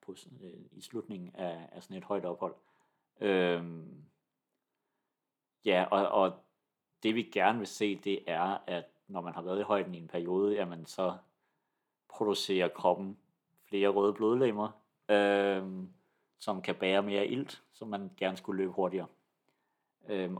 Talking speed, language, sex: 140 wpm, English, male